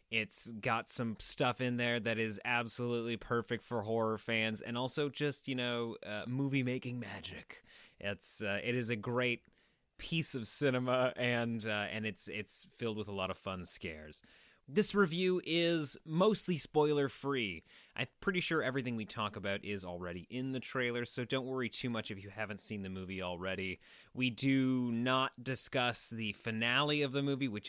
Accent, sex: American, male